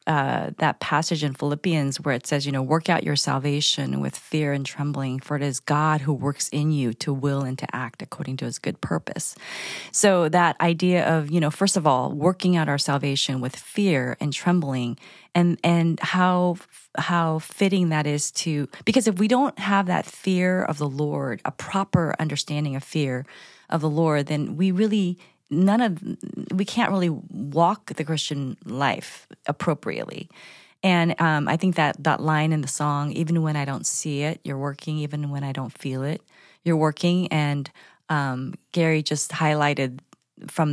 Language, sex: English, female